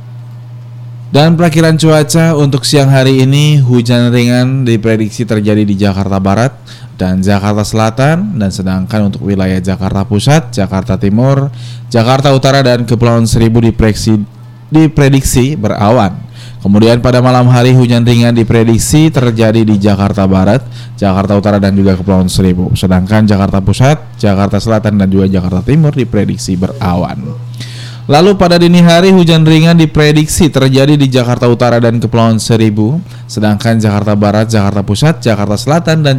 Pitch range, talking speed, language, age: 105-130 Hz, 140 wpm, Indonesian, 20-39